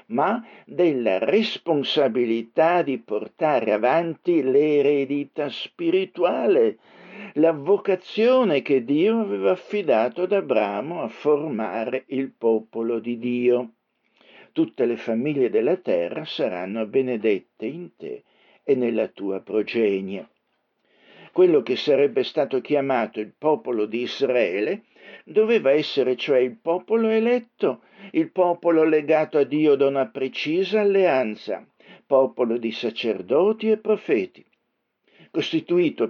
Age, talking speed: 60-79, 110 wpm